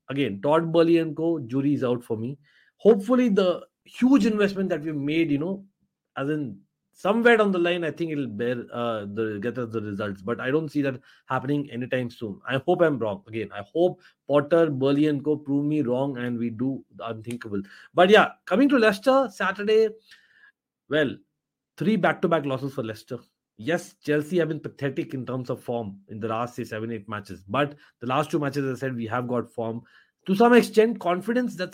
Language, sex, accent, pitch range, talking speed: English, male, Indian, 130-190 Hz, 200 wpm